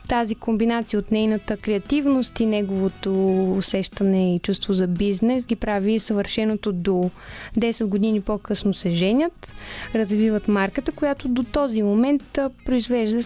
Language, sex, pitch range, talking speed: Bulgarian, female, 195-230 Hz, 125 wpm